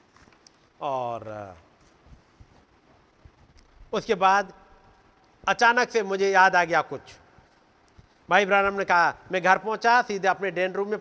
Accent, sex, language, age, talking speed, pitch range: native, male, Hindi, 50-69, 120 wpm, 180-220 Hz